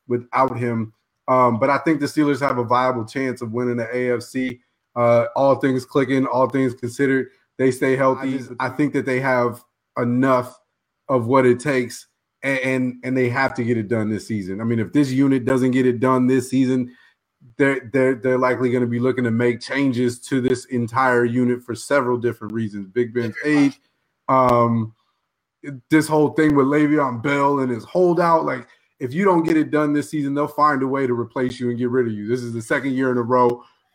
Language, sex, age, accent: English, male, 30-49, American